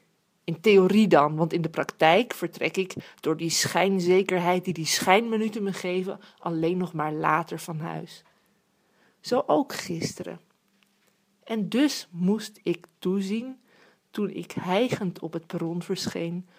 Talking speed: 135 wpm